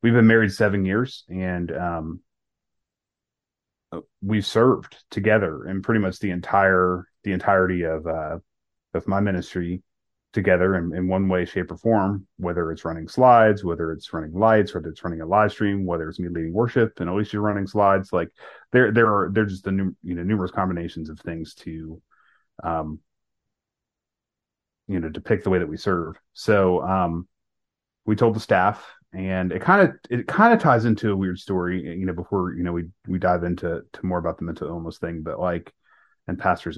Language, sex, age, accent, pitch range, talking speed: English, male, 30-49, American, 85-105 Hz, 190 wpm